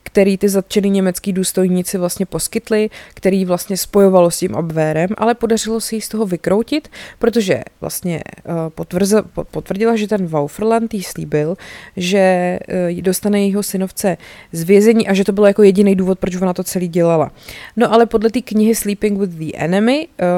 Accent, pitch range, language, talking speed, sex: native, 180-215 Hz, Czech, 160 wpm, female